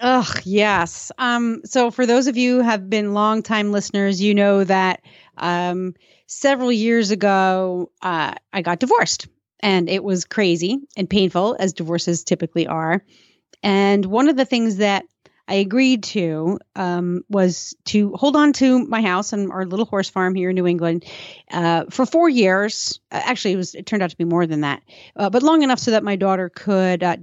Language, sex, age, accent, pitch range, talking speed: English, female, 30-49, American, 180-225 Hz, 185 wpm